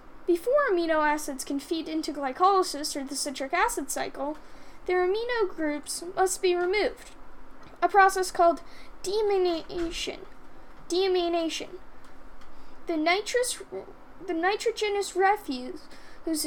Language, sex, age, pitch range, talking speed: English, female, 10-29, 305-390 Hz, 105 wpm